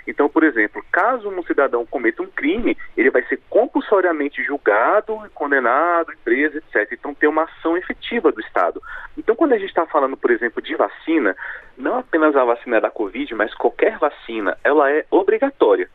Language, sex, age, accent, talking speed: Portuguese, male, 30-49, Brazilian, 175 wpm